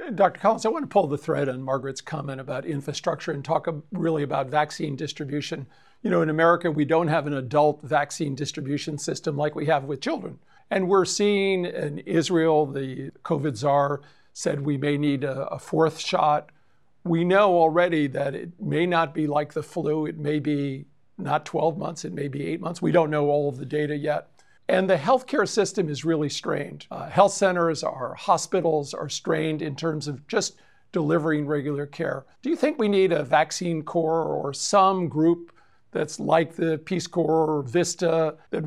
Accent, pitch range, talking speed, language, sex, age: American, 150-180 Hz, 190 wpm, English, male, 50-69